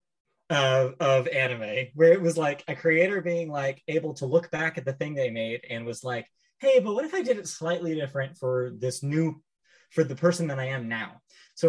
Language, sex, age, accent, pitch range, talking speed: English, male, 20-39, American, 125-175 Hz, 220 wpm